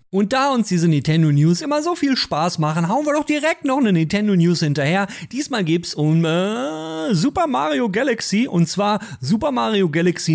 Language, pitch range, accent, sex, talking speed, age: German, 160-235 Hz, German, male, 185 wpm, 40-59